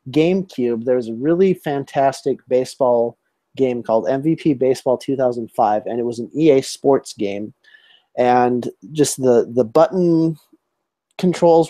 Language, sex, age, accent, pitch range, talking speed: English, male, 30-49, American, 115-140 Hz, 150 wpm